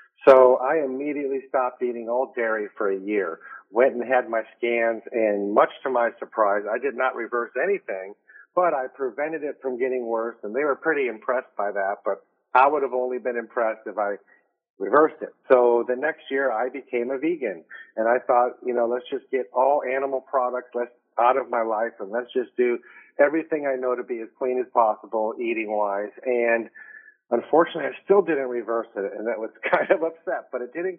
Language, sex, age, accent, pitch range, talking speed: English, male, 50-69, American, 120-160 Hz, 200 wpm